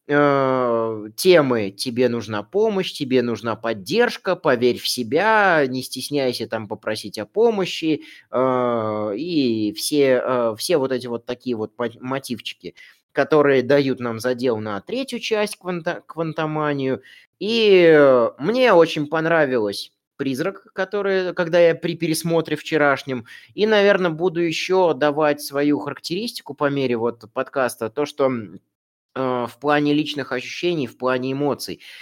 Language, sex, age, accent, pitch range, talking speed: Russian, male, 20-39, native, 125-165 Hz, 120 wpm